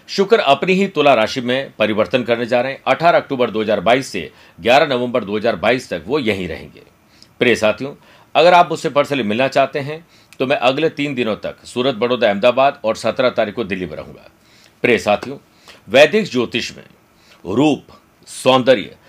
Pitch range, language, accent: 120-150 Hz, Hindi, native